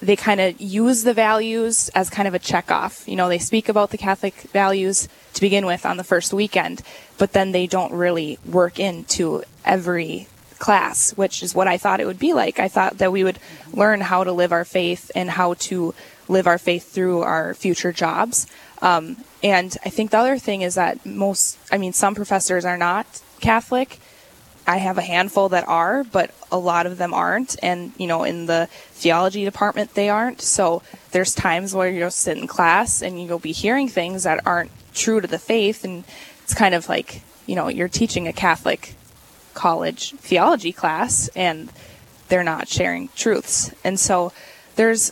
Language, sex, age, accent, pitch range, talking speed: English, female, 10-29, American, 175-210 Hz, 190 wpm